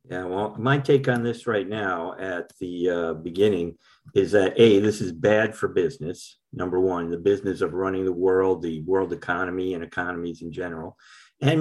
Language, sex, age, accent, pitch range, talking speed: English, male, 50-69, American, 95-125 Hz, 185 wpm